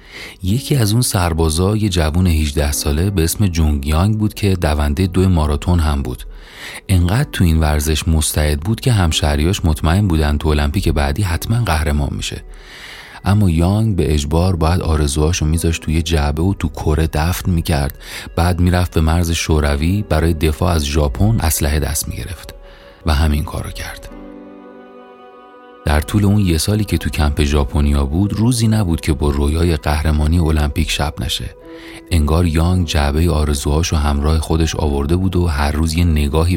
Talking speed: 160 wpm